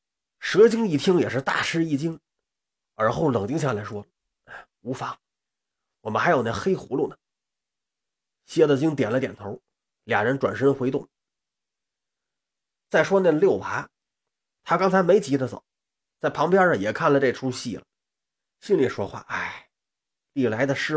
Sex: male